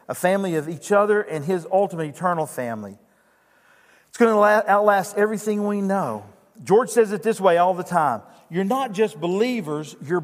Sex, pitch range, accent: male, 160-215 Hz, American